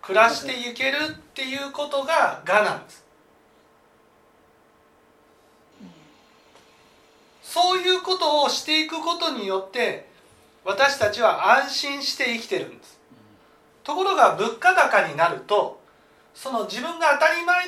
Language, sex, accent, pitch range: Japanese, male, native, 240-360 Hz